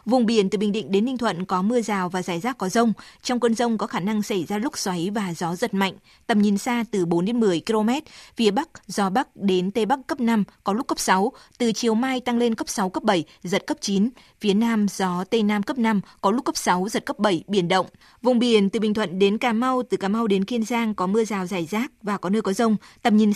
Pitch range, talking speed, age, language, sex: 195-235 Hz, 270 wpm, 20-39, Vietnamese, female